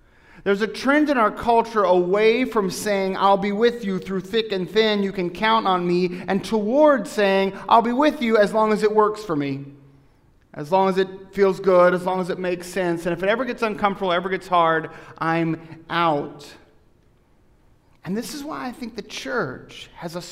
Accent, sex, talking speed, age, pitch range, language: American, male, 205 wpm, 40-59, 150-210 Hz, English